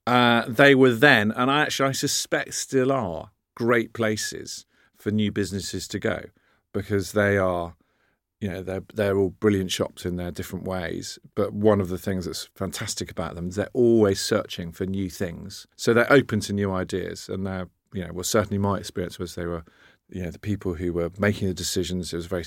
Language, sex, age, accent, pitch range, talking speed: English, male, 40-59, British, 90-105 Hz, 210 wpm